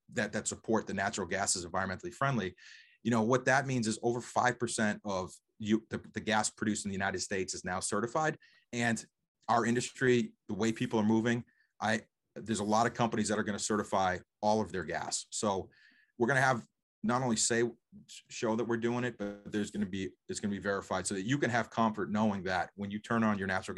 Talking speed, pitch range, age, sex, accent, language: 225 wpm, 105-120 Hz, 30-49, male, American, English